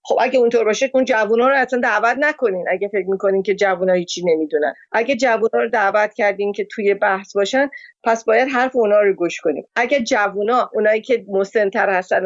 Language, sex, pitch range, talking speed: Persian, female, 200-255 Hz, 190 wpm